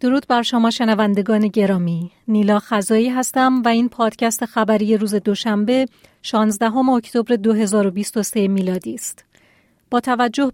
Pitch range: 210-245 Hz